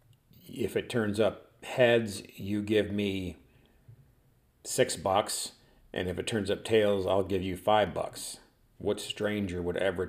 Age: 50-69